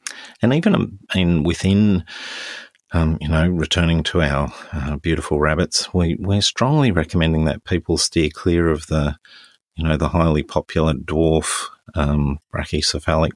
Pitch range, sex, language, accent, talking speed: 75-85 Hz, male, English, Australian, 135 wpm